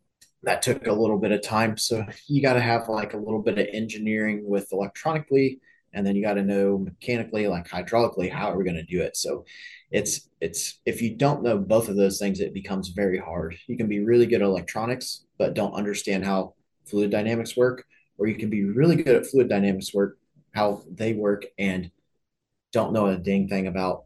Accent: American